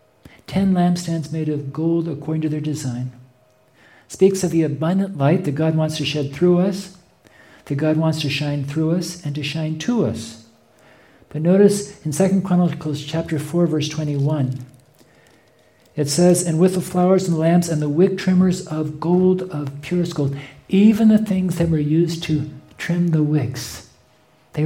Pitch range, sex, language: 135-165 Hz, male, English